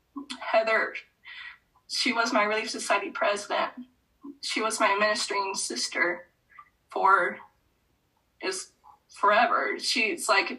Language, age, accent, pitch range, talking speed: English, 20-39, American, 225-345 Hz, 95 wpm